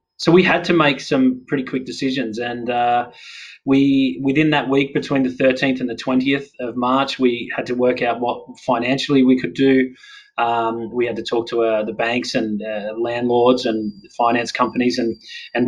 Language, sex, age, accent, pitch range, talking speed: English, male, 20-39, Australian, 120-140 Hz, 190 wpm